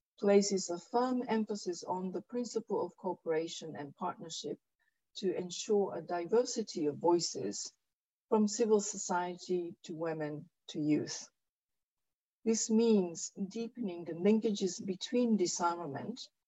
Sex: female